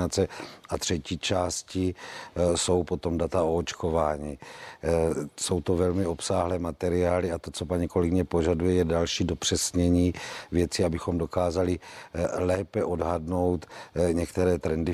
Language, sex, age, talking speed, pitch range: Czech, male, 50-69, 115 wpm, 85-90 Hz